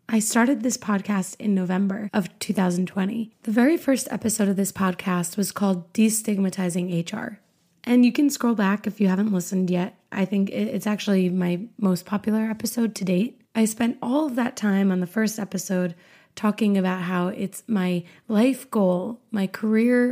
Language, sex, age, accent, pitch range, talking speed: English, female, 20-39, American, 190-235 Hz, 175 wpm